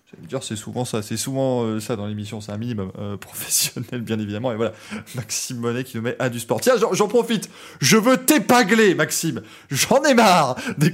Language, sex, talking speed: French, male, 210 wpm